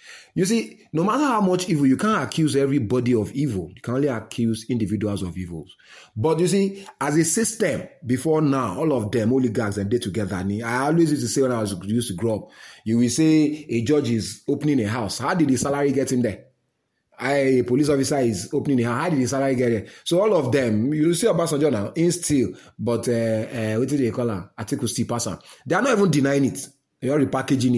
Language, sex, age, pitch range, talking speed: English, male, 30-49, 115-150 Hz, 225 wpm